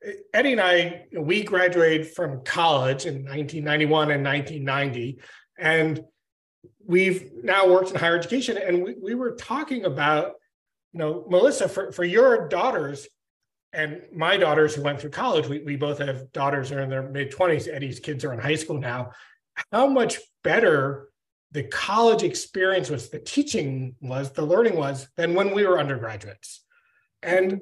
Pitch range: 145-195 Hz